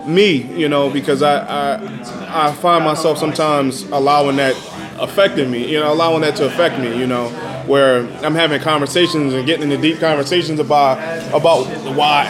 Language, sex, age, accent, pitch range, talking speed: English, male, 20-39, American, 145-195 Hz, 170 wpm